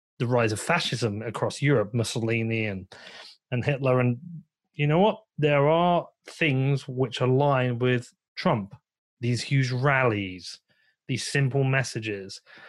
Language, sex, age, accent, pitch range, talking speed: English, male, 30-49, British, 125-165 Hz, 130 wpm